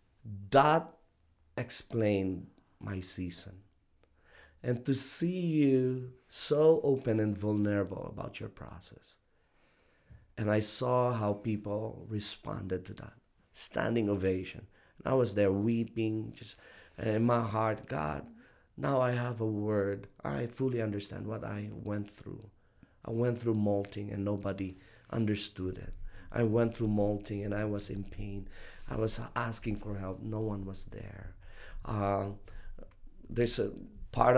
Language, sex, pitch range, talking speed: English, male, 100-120 Hz, 135 wpm